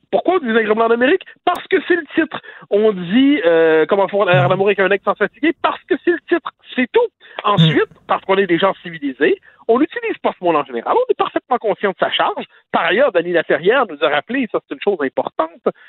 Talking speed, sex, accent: 235 wpm, male, French